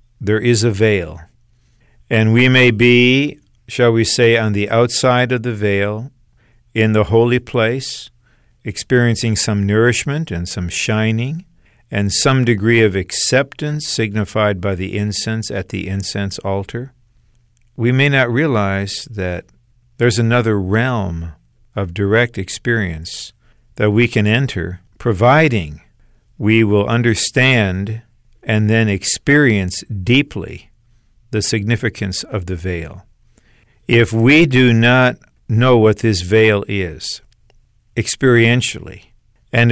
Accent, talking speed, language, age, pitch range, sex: American, 120 wpm, English, 50-69, 100-120 Hz, male